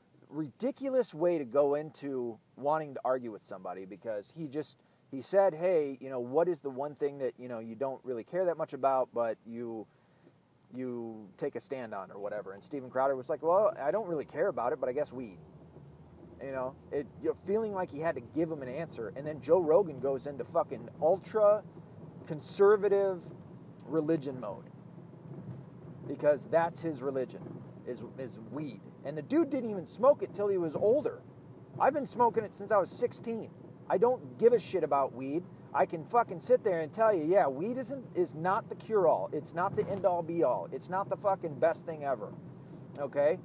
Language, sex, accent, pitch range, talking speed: English, male, American, 140-195 Hz, 200 wpm